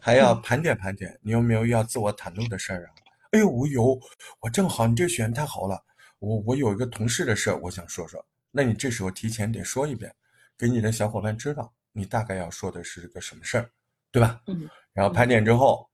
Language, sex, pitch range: Chinese, male, 110-145 Hz